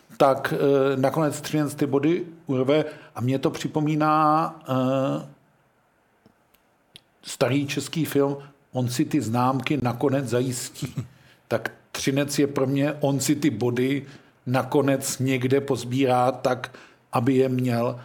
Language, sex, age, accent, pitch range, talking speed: Czech, male, 50-69, native, 130-150 Hz, 125 wpm